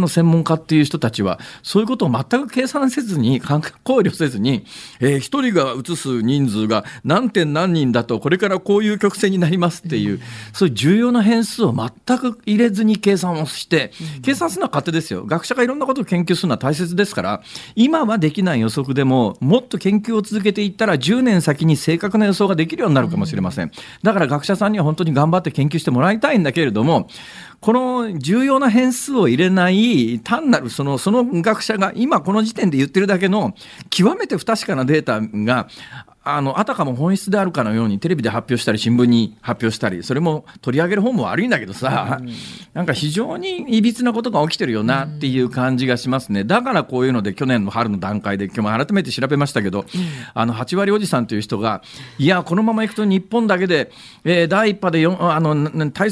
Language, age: Japanese, 40-59